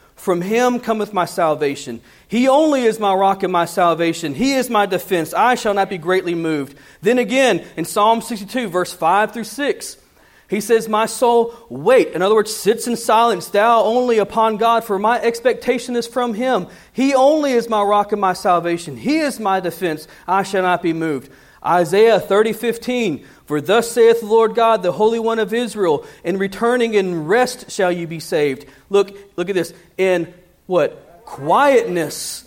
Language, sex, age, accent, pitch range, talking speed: English, male, 40-59, American, 190-250 Hz, 180 wpm